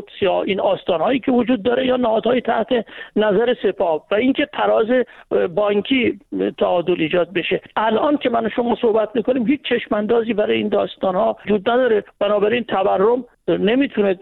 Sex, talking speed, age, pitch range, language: male, 155 wpm, 50-69, 190-245 Hz, Persian